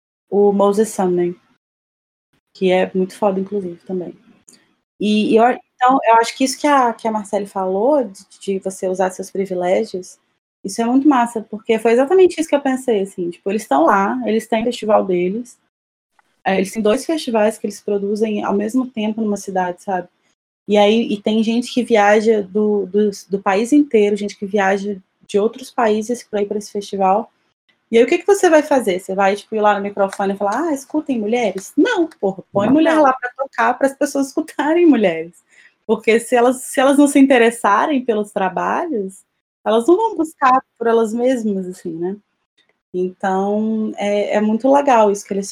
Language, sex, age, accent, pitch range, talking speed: English, female, 20-39, Brazilian, 195-245 Hz, 190 wpm